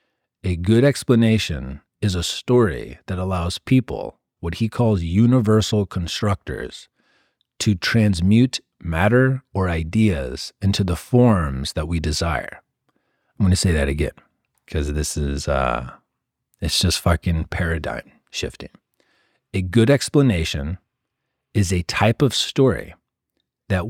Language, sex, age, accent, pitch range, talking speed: English, male, 40-59, American, 85-110 Hz, 120 wpm